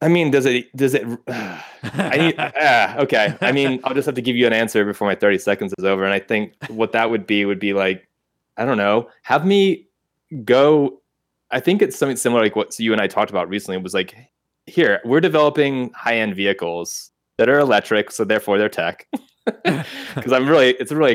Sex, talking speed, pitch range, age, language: male, 215 wpm, 100-150 Hz, 20-39, English